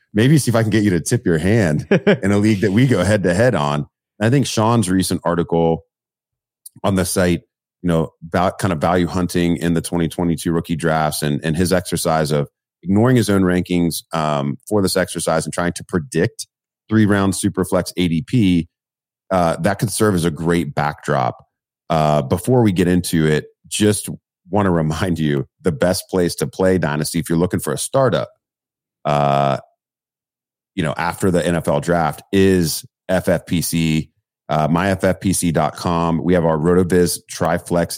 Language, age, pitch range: English, 30-49, 80-95 Hz